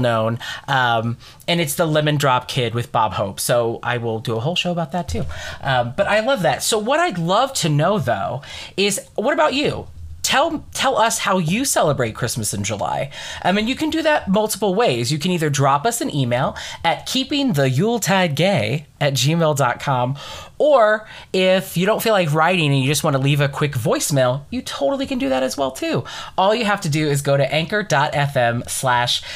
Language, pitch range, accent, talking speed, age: English, 125-185 Hz, American, 210 wpm, 20-39